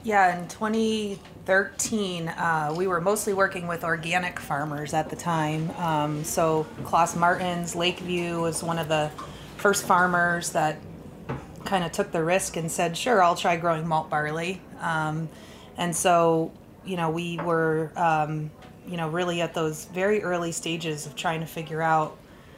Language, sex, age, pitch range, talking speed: English, female, 30-49, 155-175 Hz, 160 wpm